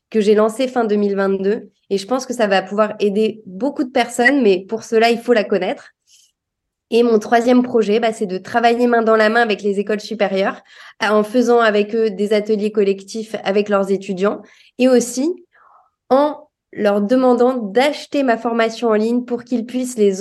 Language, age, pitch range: French, 20-39, 200-235 Hz